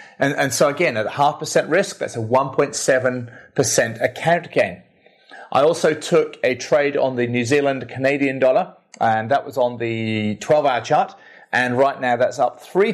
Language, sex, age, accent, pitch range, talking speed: English, male, 30-49, British, 120-155 Hz, 175 wpm